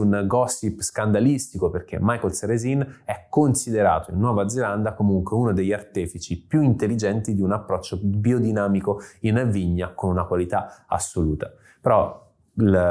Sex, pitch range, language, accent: male, 95-115 Hz, Italian, native